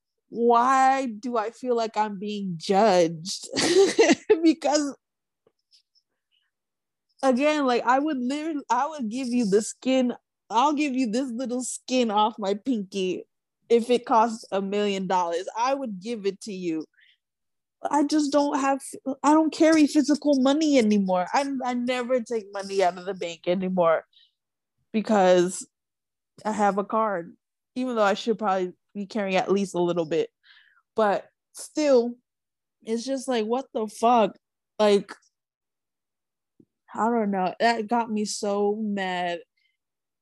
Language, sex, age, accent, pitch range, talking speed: English, female, 20-39, American, 200-255 Hz, 140 wpm